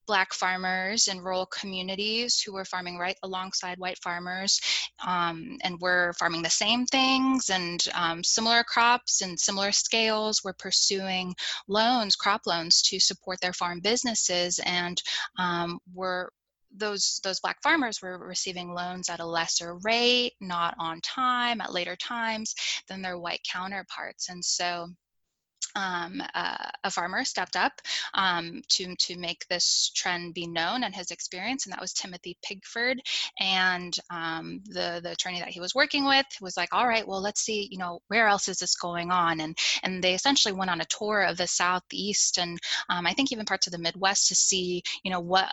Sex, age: female, 10-29